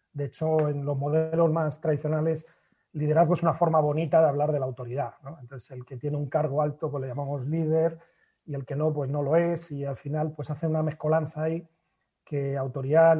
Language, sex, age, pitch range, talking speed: Spanish, male, 30-49, 140-165 Hz, 215 wpm